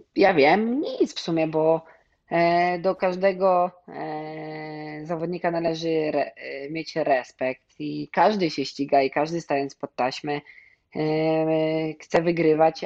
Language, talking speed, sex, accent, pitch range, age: Polish, 105 wpm, female, native, 150-175 Hz, 20-39